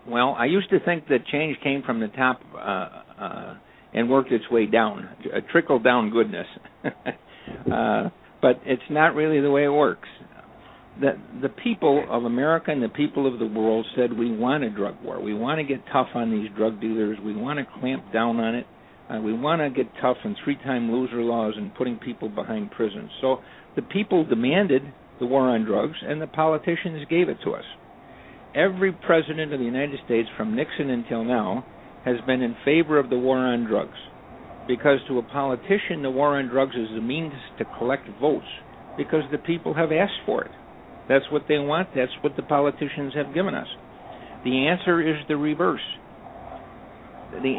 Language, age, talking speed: English, 60-79, 190 wpm